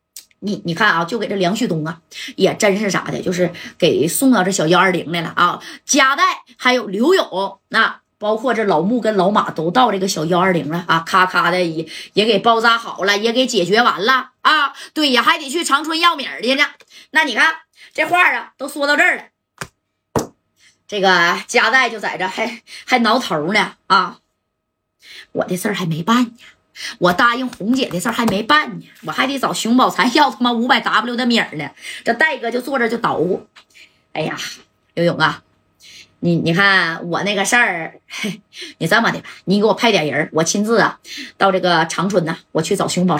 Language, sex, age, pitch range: Chinese, female, 20-39, 180-260 Hz